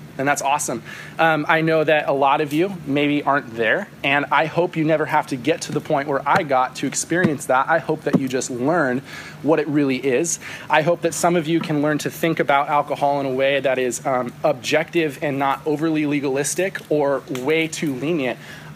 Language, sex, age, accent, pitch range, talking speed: English, male, 20-39, American, 140-160 Hz, 220 wpm